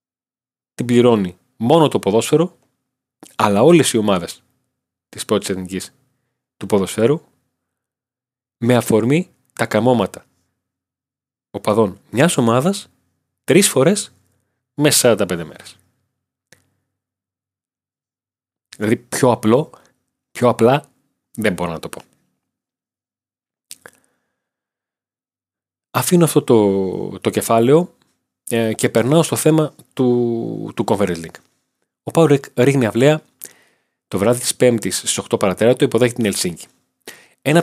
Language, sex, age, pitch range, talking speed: Greek, male, 30-49, 105-130 Hz, 100 wpm